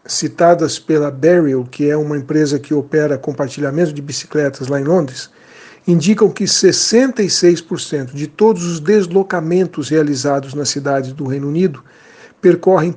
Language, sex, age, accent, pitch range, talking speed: Portuguese, male, 60-79, Brazilian, 150-180 Hz, 135 wpm